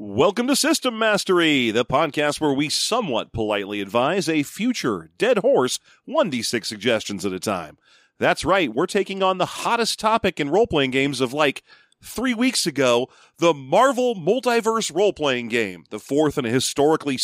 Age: 40-59